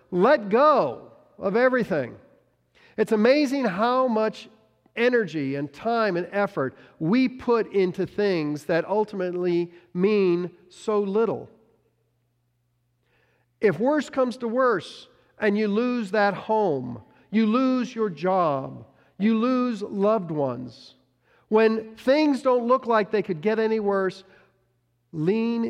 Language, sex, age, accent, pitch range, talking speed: English, male, 50-69, American, 125-205 Hz, 120 wpm